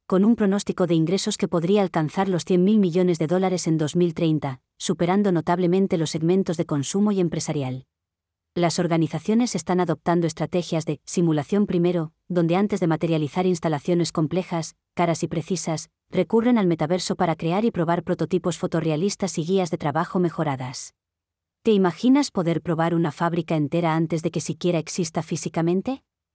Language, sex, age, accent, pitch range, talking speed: Spanish, female, 30-49, Spanish, 160-185 Hz, 155 wpm